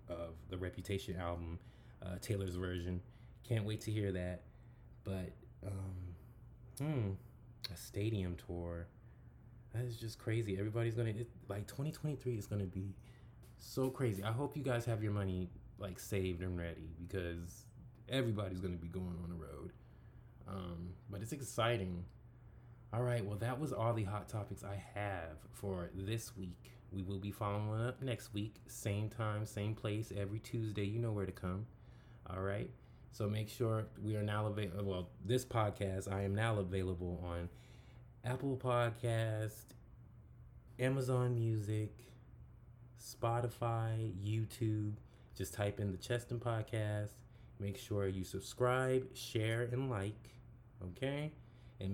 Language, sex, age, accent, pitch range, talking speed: English, male, 20-39, American, 95-120 Hz, 145 wpm